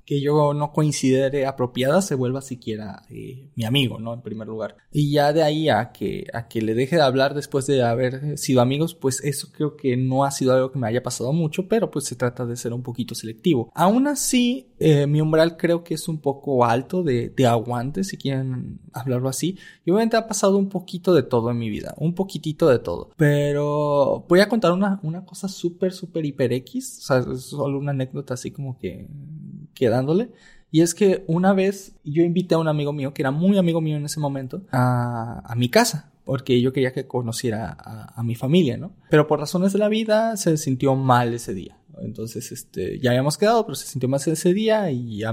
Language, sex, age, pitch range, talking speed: Spanish, male, 20-39, 130-170 Hz, 220 wpm